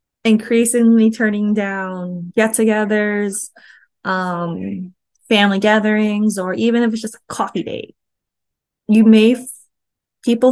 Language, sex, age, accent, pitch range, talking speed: English, female, 20-39, American, 190-225 Hz, 95 wpm